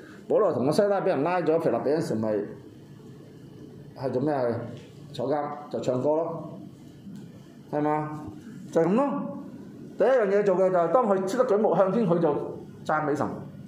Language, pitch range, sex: Chinese, 140-190 Hz, male